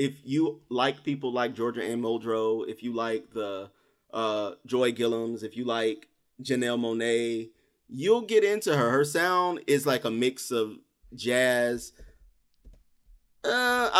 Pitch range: 115-145 Hz